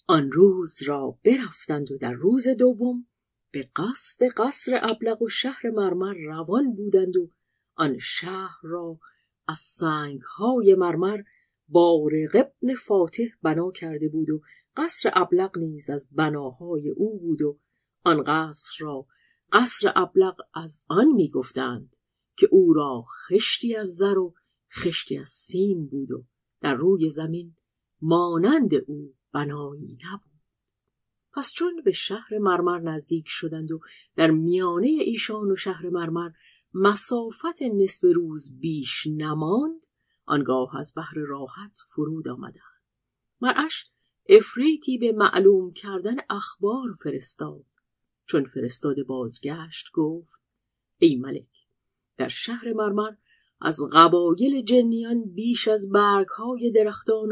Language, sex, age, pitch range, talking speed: Persian, female, 50-69, 155-220 Hz, 120 wpm